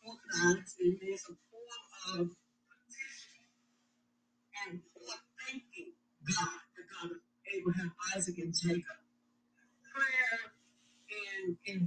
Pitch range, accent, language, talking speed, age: 200-275 Hz, American, English, 90 wpm, 60-79